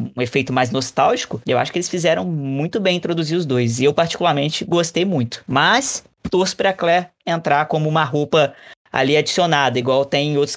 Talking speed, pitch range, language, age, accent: 185 wpm, 140-180 Hz, Portuguese, 20-39, Brazilian